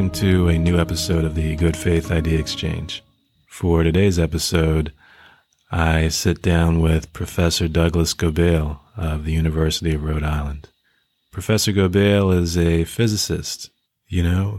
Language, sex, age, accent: English, male, 30-49, American